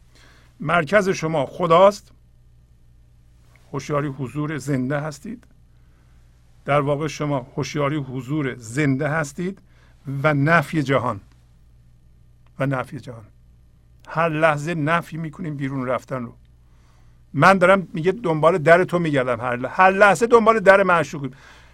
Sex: male